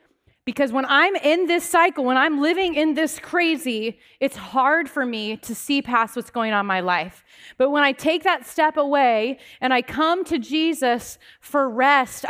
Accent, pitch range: American, 220-280 Hz